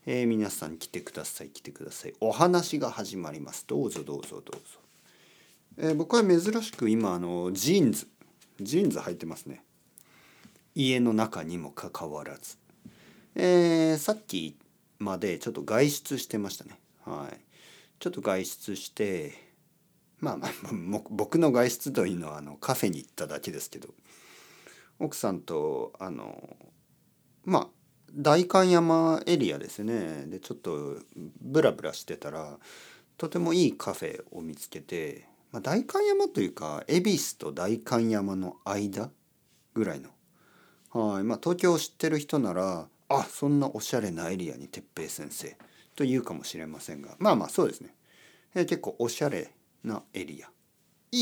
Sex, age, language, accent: male, 40-59, Japanese, native